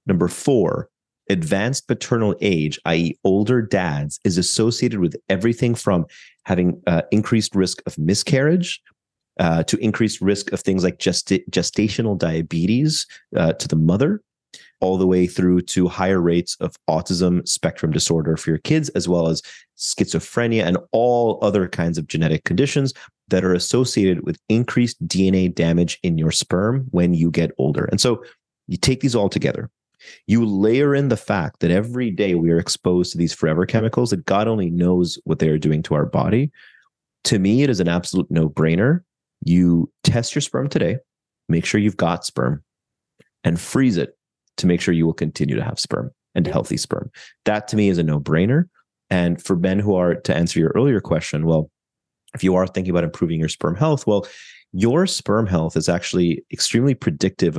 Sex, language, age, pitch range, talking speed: male, English, 30-49, 85-115 Hz, 180 wpm